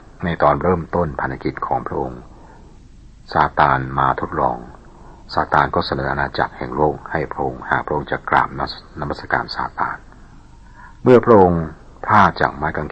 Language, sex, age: Thai, male, 60-79